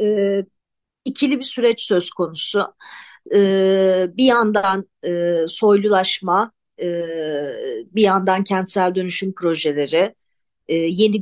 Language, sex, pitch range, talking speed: Turkish, female, 180-230 Hz, 100 wpm